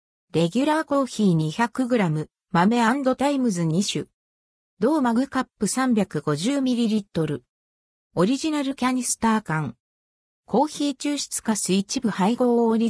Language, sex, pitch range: Japanese, female, 175-265 Hz